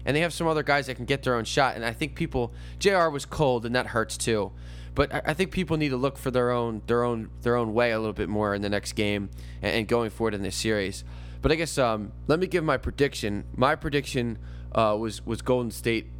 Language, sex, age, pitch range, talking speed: English, male, 20-39, 100-135 Hz, 250 wpm